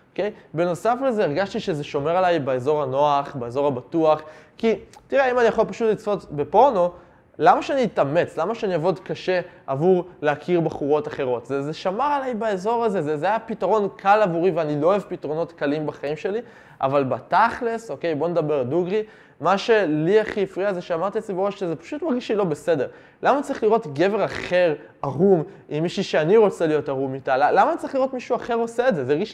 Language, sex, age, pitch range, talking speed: Hebrew, male, 20-39, 150-210 Hz, 190 wpm